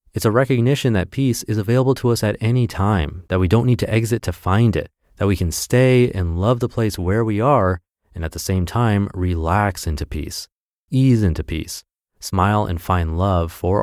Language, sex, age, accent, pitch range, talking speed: English, male, 30-49, American, 90-115 Hz, 210 wpm